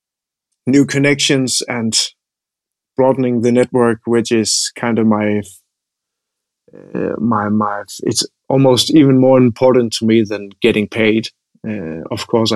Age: 30-49